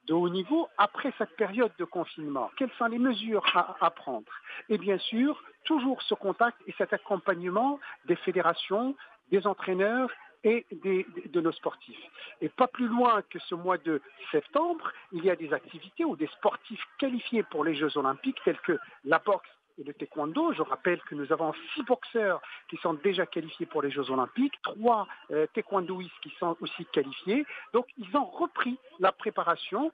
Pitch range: 170-240 Hz